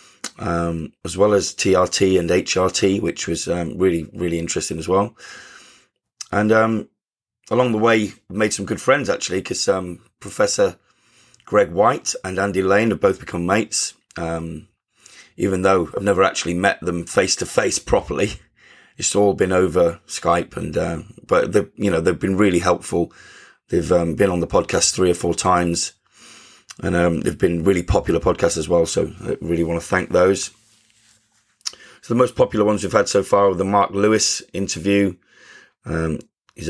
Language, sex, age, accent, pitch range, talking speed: English, male, 20-39, British, 85-100 Hz, 175 wpm